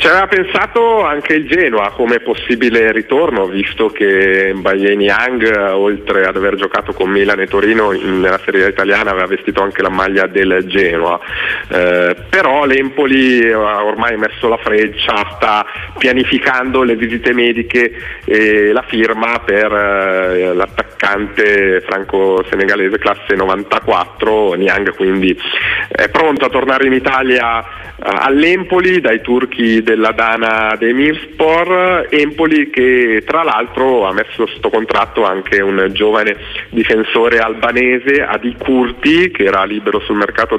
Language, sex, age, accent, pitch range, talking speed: Italian, male, 40-59, native, 100-130 Hz, 135 wpm